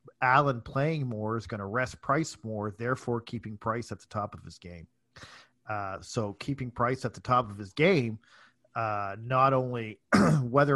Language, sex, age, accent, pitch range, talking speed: English, male, 40-59, American, 105-130 Hz, 180 wpm